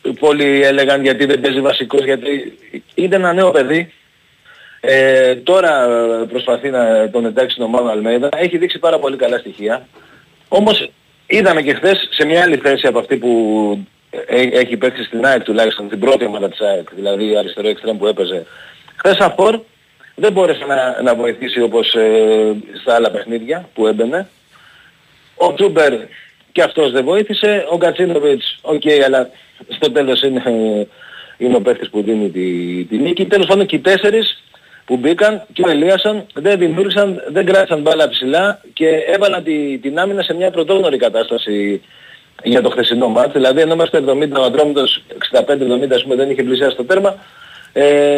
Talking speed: 160 wpm